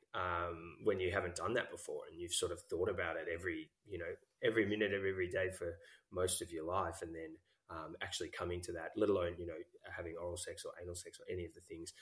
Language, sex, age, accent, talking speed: English, male, 20-39, Australian, 245 wpm